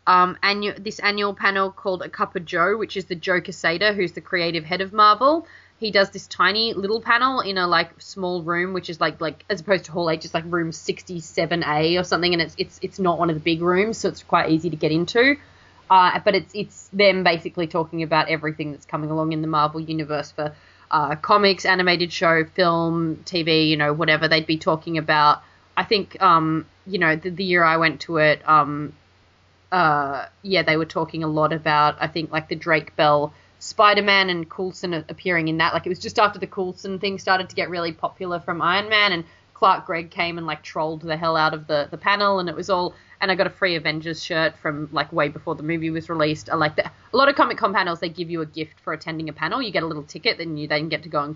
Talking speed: 240 wpm